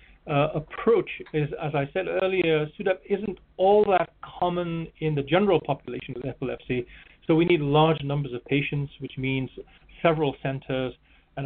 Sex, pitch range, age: male, 125-155 Hz, 40-59